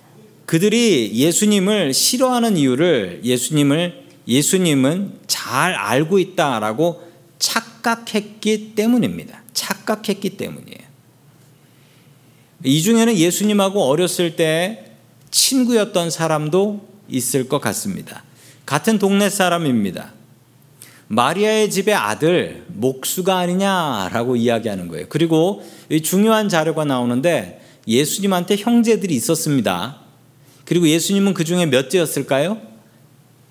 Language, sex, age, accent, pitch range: Korean, male, 40-59, native, 140-200 Hz